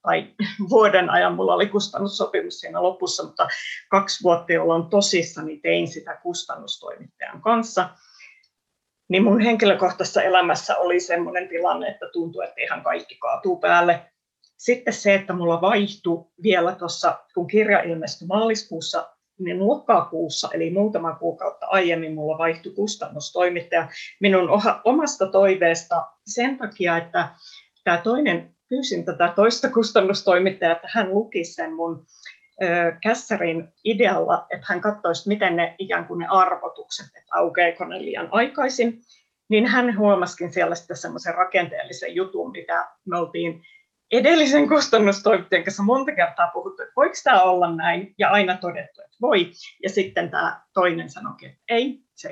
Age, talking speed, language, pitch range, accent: 30-49, 140 wpm, Finnish, 175-230 Hz, native